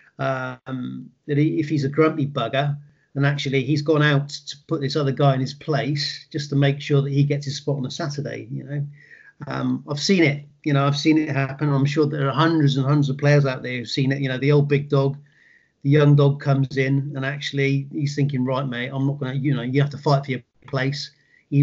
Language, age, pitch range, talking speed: English, 40-59, 140-150 Hz, 245 wpm